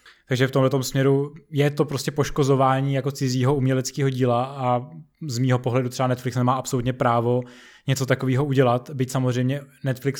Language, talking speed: Czech, 155 wpm